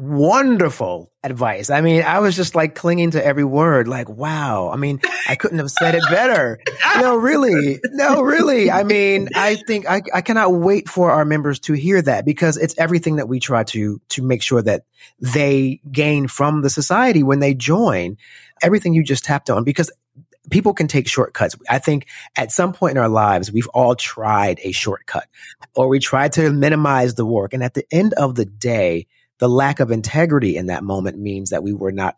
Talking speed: 200 wpm